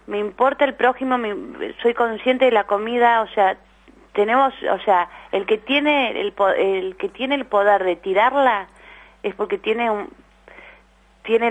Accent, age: Argentinian, 30-49